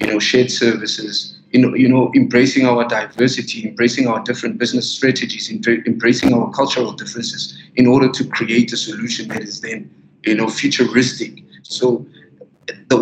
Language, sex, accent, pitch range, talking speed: English, male, South African, 115-145 Hz, 155 wpm